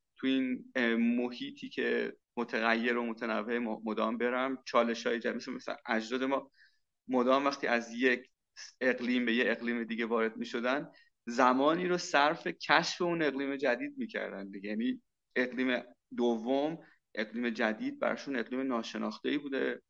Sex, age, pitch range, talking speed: male, 30-49, 115-150 Hz, 135 wpm